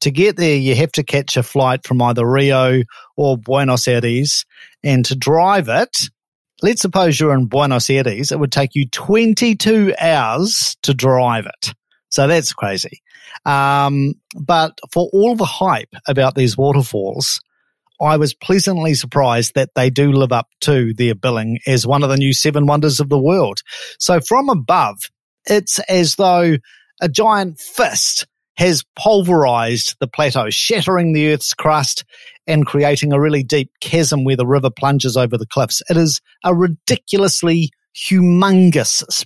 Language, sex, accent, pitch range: English, male, Australian, 135-180 Hz